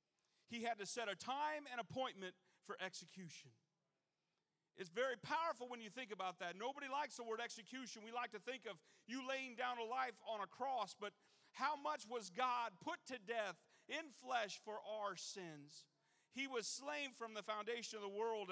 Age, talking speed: 40-59, 190 wpm